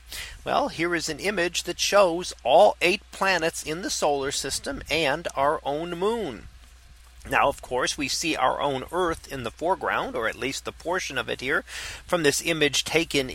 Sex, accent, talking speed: male, American, 185 wpm